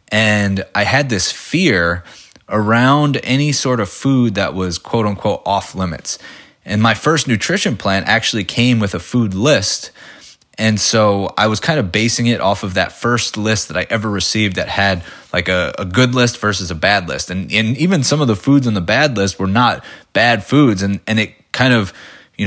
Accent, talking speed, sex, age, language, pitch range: American, 205 wpm, male, 20-39, English, 95-120 Hz